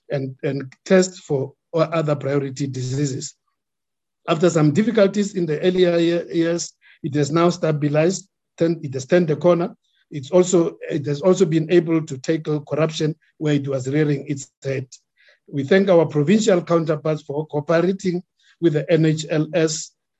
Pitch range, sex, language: 145-175 Hz, male, English